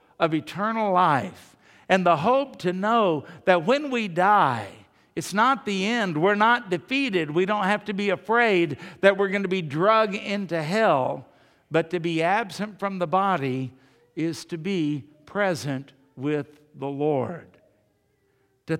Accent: American